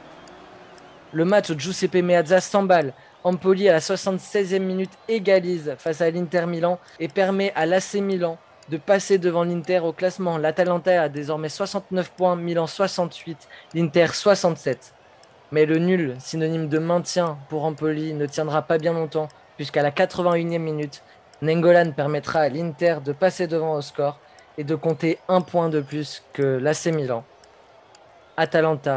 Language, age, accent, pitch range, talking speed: French, 20-39, French, 135-170 Hz, 155 wpm